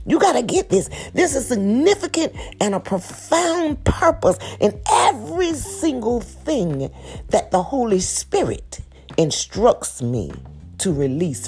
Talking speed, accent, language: 130 wpm, American, English